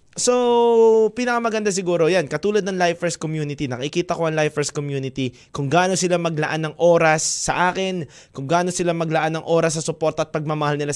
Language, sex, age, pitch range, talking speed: Filipino, male, 20-39, 145-190 Hz, 175 wpm